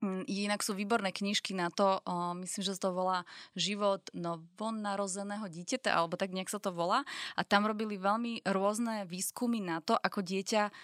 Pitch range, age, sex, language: 180-220 Hz, 20-39, female, Slovak